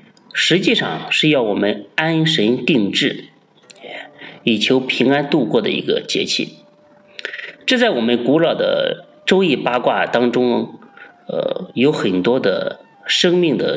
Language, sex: Chinese, male